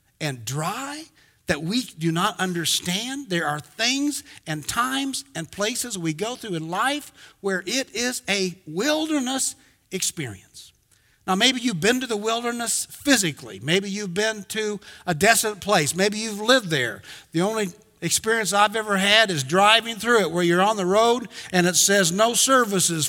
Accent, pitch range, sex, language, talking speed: American, 155-225 Hz, male, English, 165 wpm